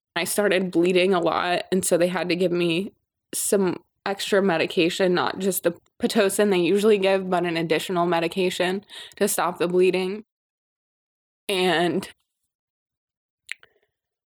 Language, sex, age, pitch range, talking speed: English, female, 20-39, 175-210 Hz, 130 wpm